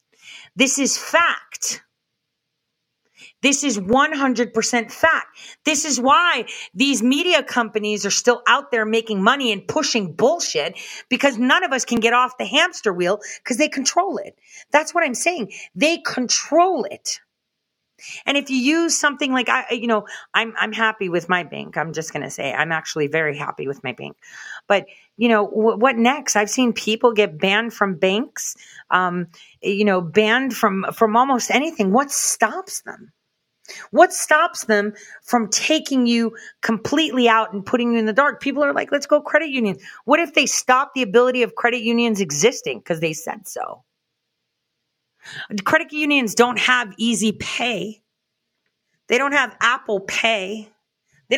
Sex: female